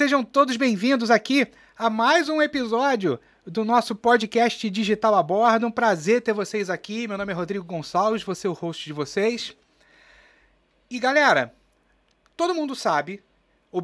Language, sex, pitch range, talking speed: Portuguese, male, 195-265 Hz, 155 wpm